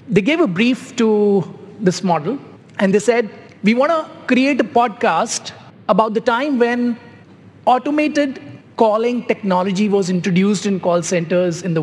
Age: 30-49